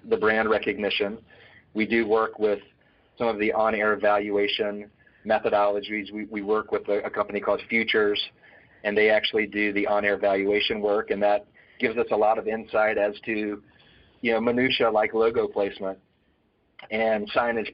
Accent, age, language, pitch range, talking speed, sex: American, 40-59, English, 105-115 Hz, 160 wpm, male